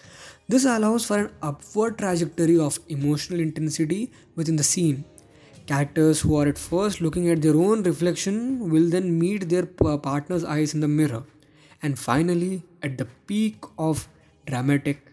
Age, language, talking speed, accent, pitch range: 20-39, English, 150 wpm, Indian, 145-185 Hz